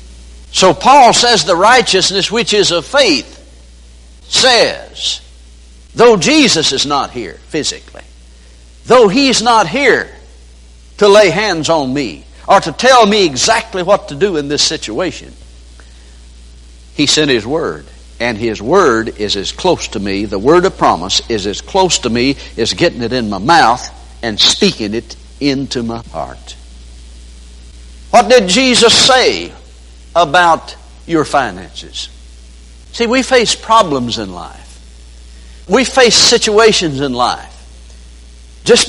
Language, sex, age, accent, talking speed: English, male, 60-79, American, 135 wpm